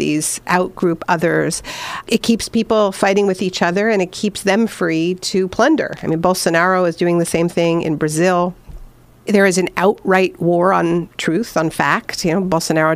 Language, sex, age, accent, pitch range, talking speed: English, female, 50-69, American, 160-190 Hz, 180 wpm